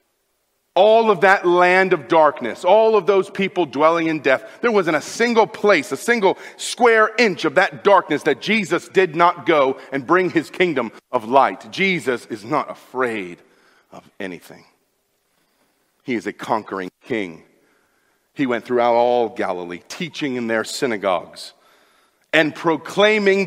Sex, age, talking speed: male, 40-59, 150 wpm